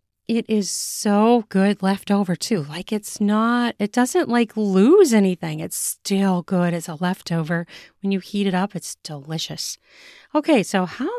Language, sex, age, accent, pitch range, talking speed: English, female, 30-49, American, 175-245 Hz, 160 wpm